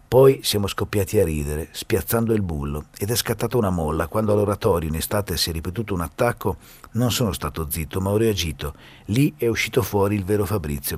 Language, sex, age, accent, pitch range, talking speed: Italian, male, 50-69, native, 85-115 Hz, 195 wpm